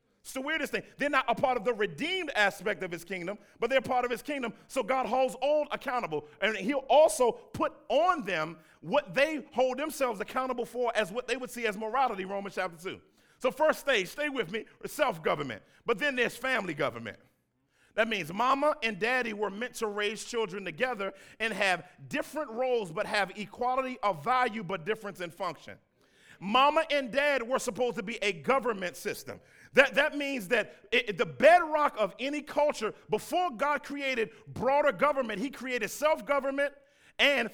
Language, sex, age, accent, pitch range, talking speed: English, male, 40-59, American, 210-280 Hz, 180 wpm